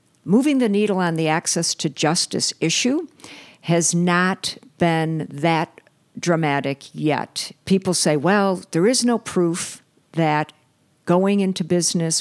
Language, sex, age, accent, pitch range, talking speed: English, female, 50-69, American, 150-185 Hz, 130 wpm